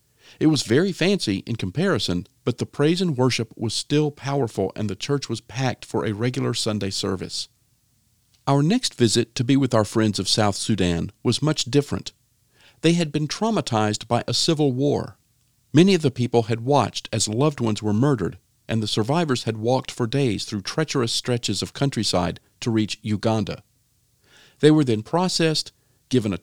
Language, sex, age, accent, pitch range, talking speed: English, male, 50-69, American, 110-140 Hz, 175 wpm